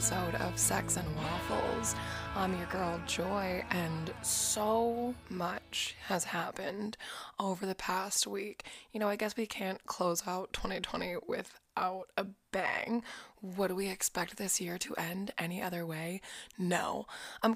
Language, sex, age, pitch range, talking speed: English, female, 20-39, 175-215 Hz, 140 wpm